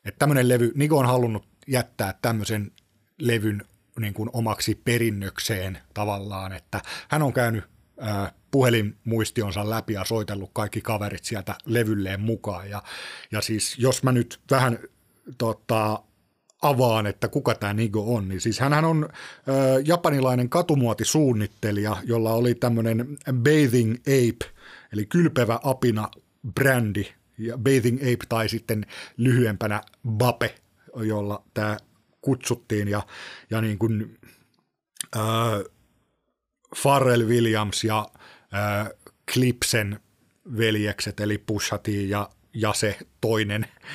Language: Finnish